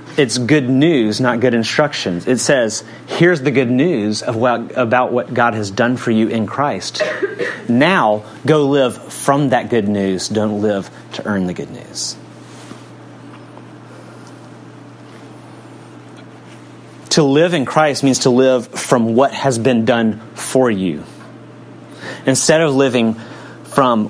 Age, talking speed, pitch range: 30-49, 130 wpm, 110-155 Hz